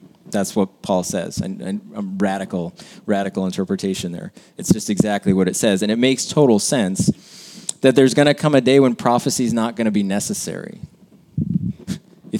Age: 20-39